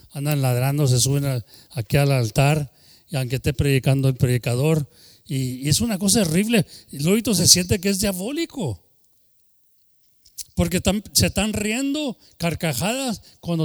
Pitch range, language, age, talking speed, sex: 125-170 Hz, English, 40-59, 140 wpm, male